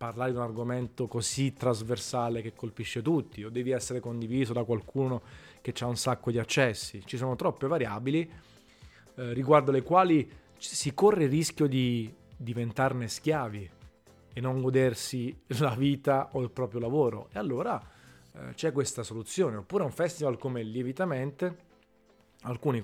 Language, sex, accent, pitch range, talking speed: Italian, male, native, 115-140 Hz, 150 wpm